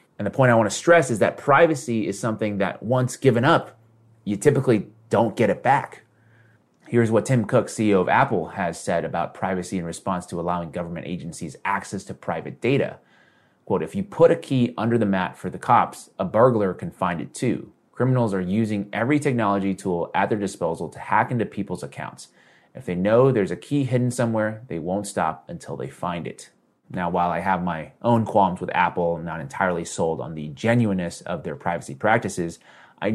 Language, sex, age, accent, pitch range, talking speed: English, male, 30-49, American, 95-120 Hz, 200 wpm